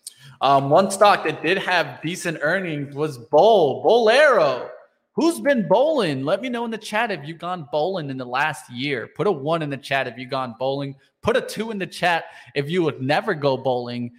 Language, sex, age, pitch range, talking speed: English, male, 20-39, 130-160 Hz, 210 wpm